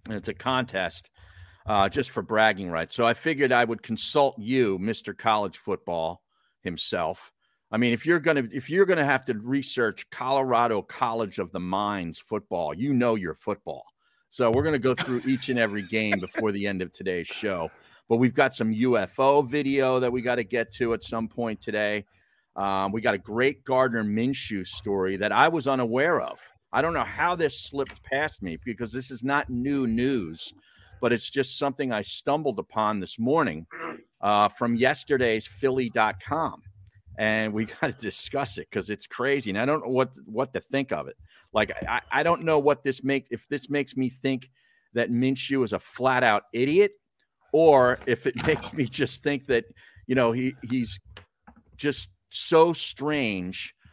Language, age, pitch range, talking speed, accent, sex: English, 50-69, 105-135 Hz, 185 wpm, American, male